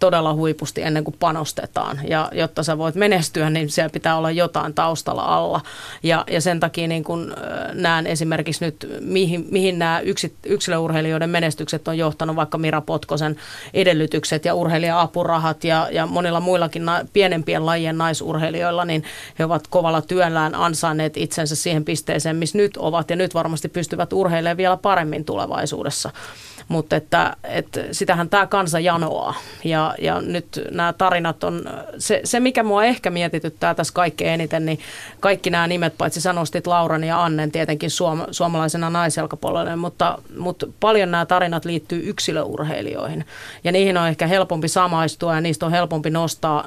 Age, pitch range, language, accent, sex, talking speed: 30-49, 160-175 Hz, Finnish, native, female, 150 wpm